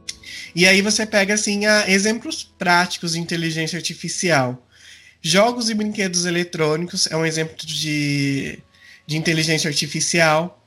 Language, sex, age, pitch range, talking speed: Portuguese, male, 20-39, 155-185 Hz, 120 wpm